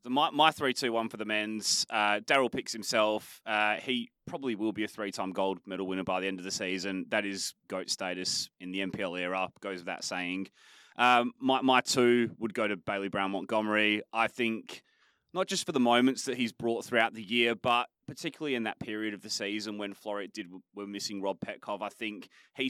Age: 20-39